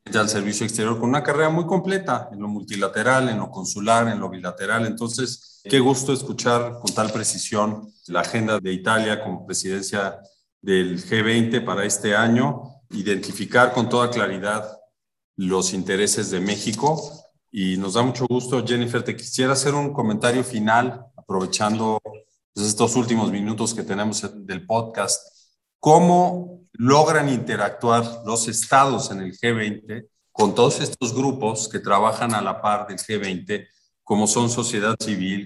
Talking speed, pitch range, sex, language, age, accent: 145 wpm, 105-125 Hz, male, Spanish, 40-59, Mexican